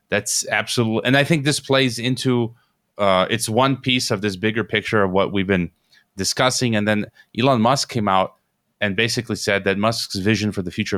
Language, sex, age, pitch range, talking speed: English, male, 30-49, 105-125 Hz, 195 wpm